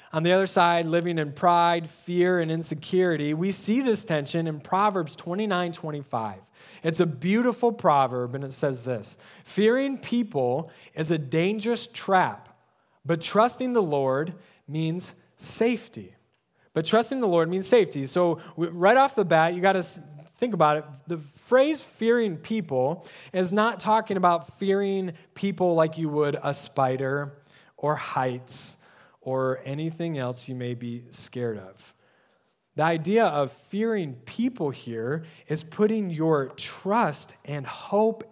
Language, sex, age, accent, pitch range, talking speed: English, male, 30-49, American, 140-195 Hz, 145 wpm